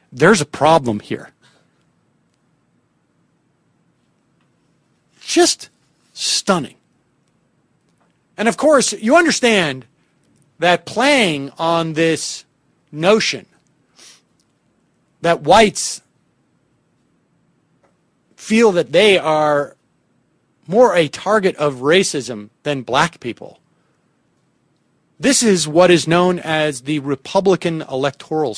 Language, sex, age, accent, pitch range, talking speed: English, male, 40-59, American, 140-185 Hz, 80 wpm